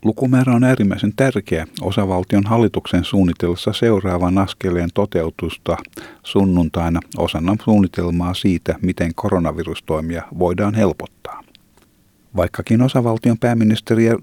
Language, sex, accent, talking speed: Finnish, male, native, 90 wpm